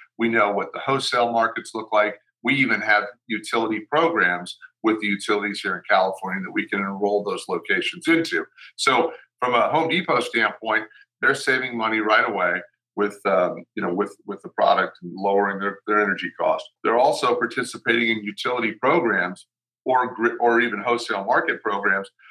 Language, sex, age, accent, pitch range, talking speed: English, male, 50-69, American, 105-130 Hz, 170 wpm